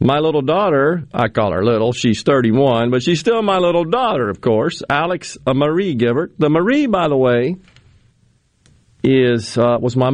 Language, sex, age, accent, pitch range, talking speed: English, male, 50-69, American, 110-150 Hz, 180 wpm